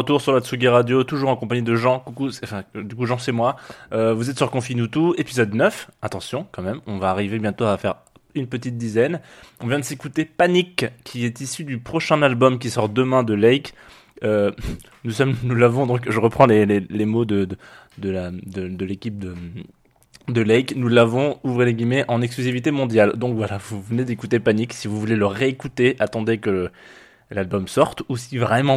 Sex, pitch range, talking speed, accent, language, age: male, 100-125 Hz, 215 wpm, French, French, 20-39